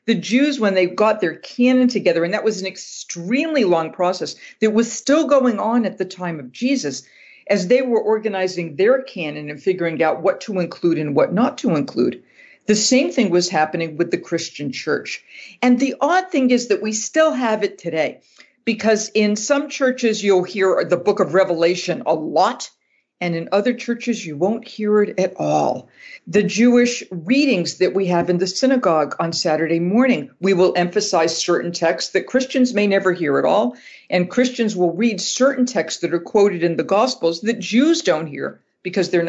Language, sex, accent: English, female, American